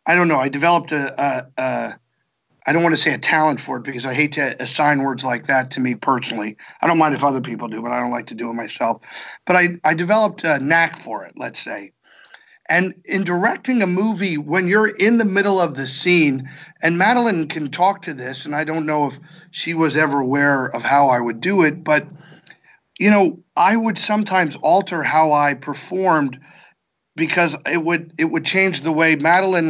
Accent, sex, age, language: American, male, 50-69, English